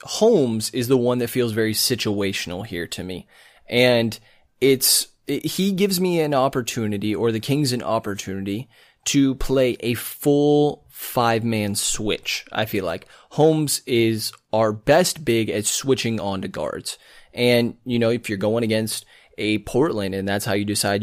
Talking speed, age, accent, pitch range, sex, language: 160 wpm, 20-39, American, 105-125 Hz, male, English